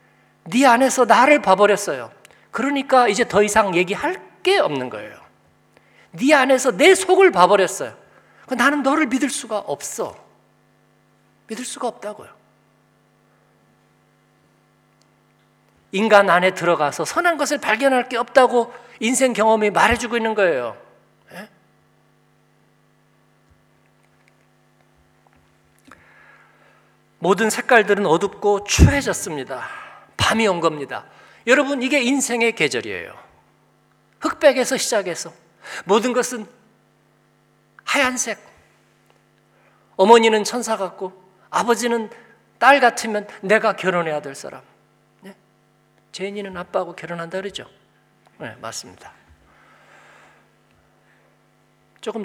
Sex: male